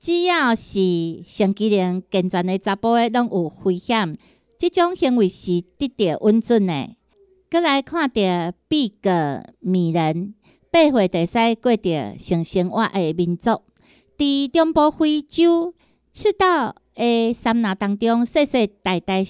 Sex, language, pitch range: female, Chinese, 185-255 Hz